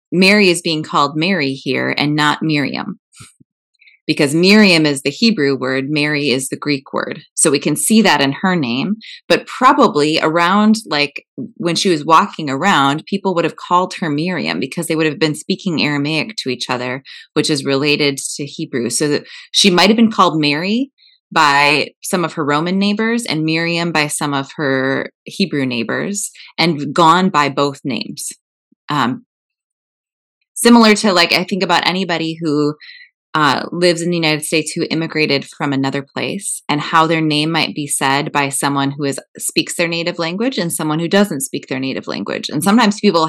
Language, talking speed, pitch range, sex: English, 180 wpm, 145-195 Hz, female